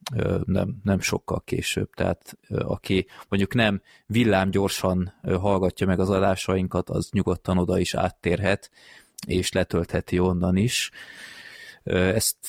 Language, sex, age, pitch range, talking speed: Hungarian, male, 20-39, 90-100 Hz, 115 wpm